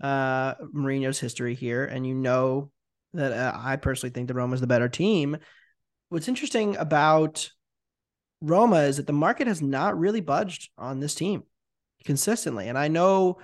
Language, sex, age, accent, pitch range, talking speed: English, male, 20-39, American, 125-150 Hz, 165 wpm